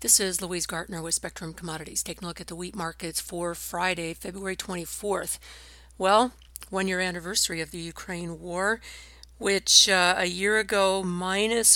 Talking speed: 165 wpm